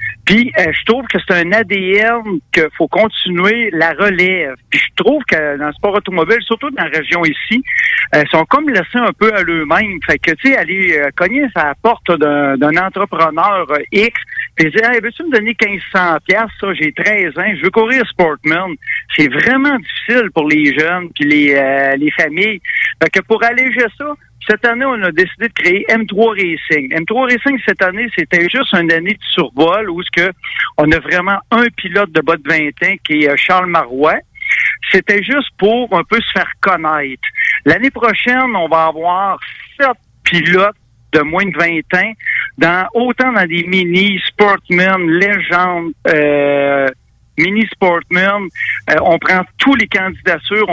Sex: male